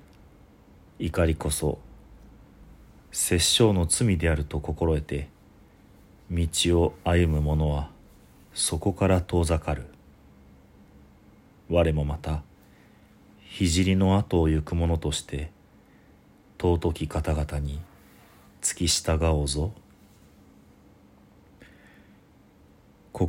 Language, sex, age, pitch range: Japanese, male, 40-59, 70-95 Hz